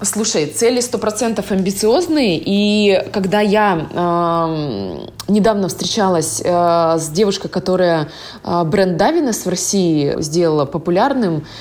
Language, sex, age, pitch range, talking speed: Russian, female, 20-39, 175-215 Hz, 105 wpm